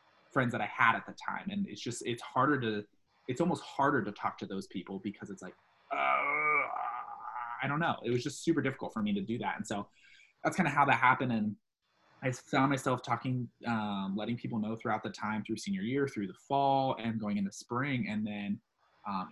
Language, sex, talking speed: English, male, 220 wpm